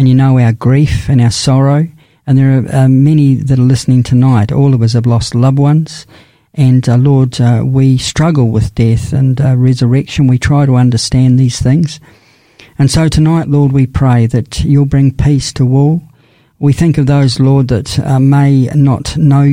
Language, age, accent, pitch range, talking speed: English, 50-69, Australian, 125-145 Hz, 195 wpm